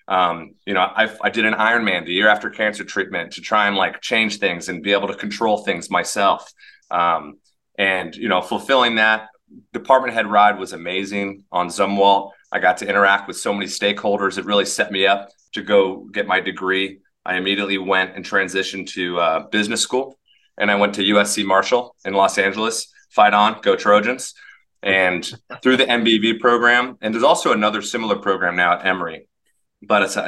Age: 30-49